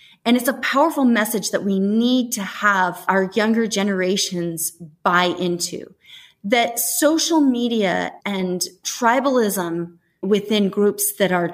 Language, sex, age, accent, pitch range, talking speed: English, female, 30-49, American, 185-235 Hz, 125 wpm